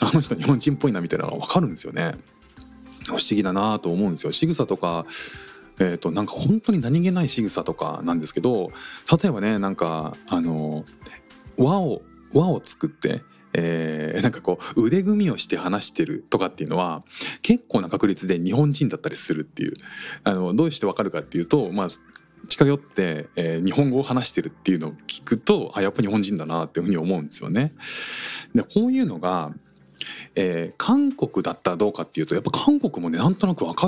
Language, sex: Japanese, male